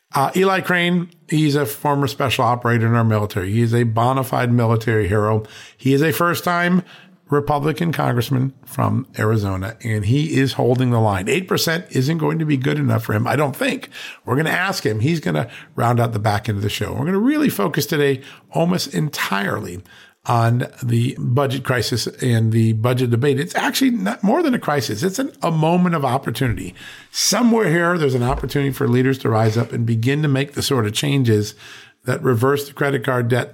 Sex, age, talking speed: male, 50-69, 200 wpm